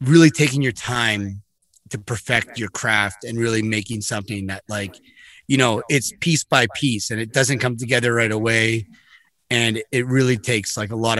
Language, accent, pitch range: English, American, 110-135 Hz